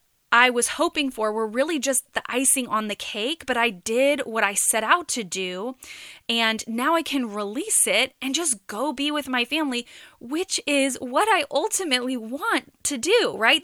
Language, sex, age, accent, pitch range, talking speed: English, female, 20-39, American, 225-280 Hz, 190 wpm